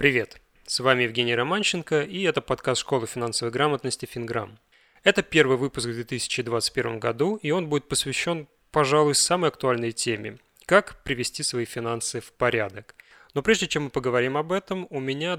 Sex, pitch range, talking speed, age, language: male, 120-155 Hz, 165 wpm, 20-39, Russian